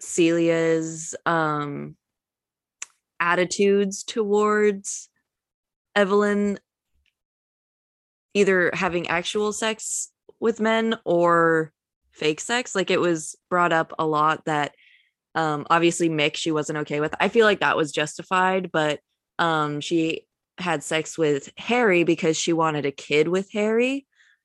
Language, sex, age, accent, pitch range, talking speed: English, female, 20-39, American, 155-190 Hz, 120 wpm